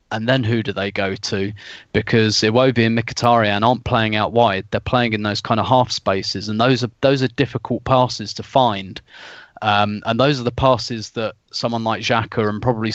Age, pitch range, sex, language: 20-39, 105-125 Hz, male, English